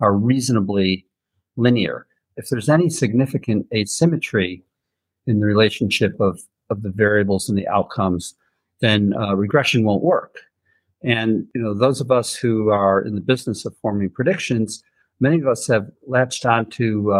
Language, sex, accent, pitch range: English, male, American, 100-130 Hz